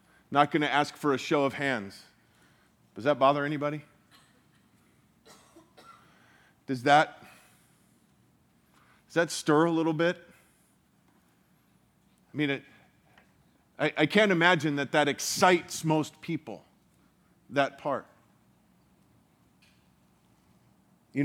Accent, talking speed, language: American, 100 wpm, English